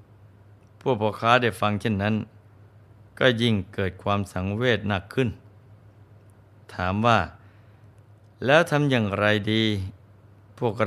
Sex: male